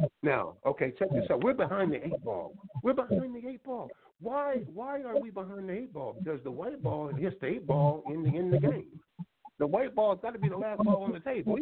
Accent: American